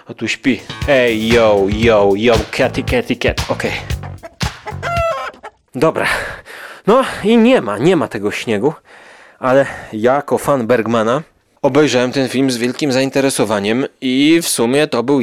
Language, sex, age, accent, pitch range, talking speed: Polish, male, 30-49, native, 115-165 Hz, 150 wpm